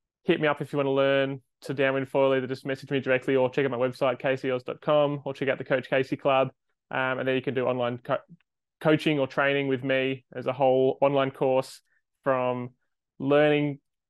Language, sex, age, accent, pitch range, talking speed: English, male, 20-39, Australian, 125-145 Hz, 205 wpm